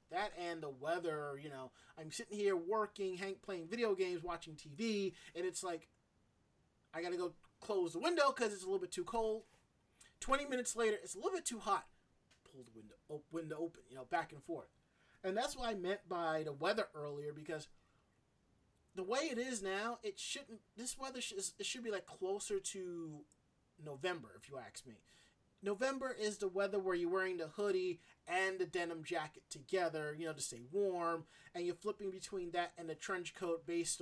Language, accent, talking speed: English, American, 195 wpm